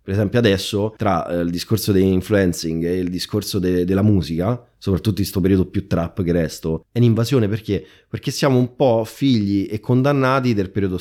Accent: native